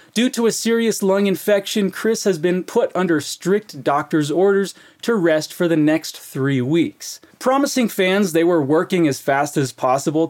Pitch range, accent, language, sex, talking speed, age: 160-215 Hz, American, Portuguese, male, 175 wpm, 30-49